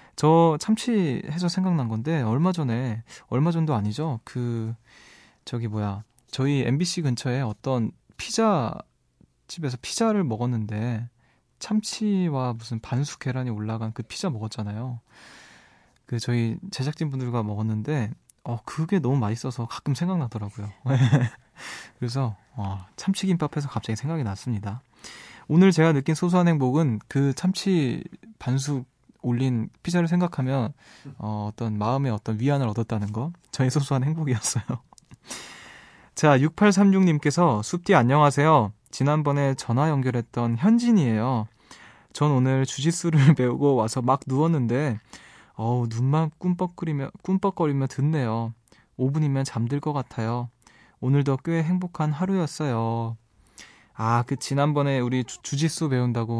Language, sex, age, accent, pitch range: Korean, male, 20-39, native, 115-155 Hz